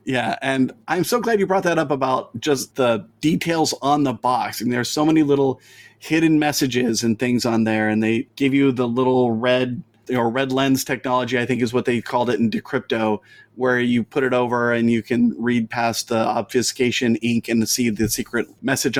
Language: English